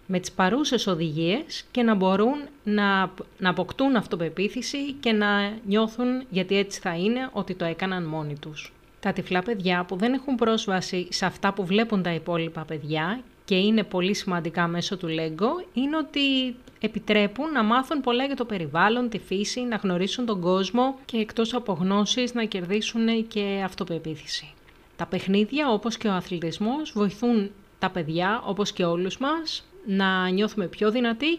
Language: Greek